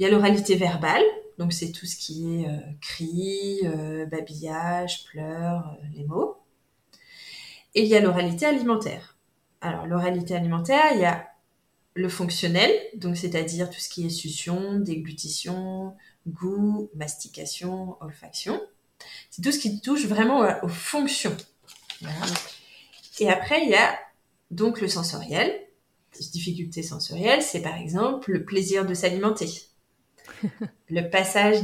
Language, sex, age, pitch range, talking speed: French, female, 20-39, 165-210 Hz, 140 wpm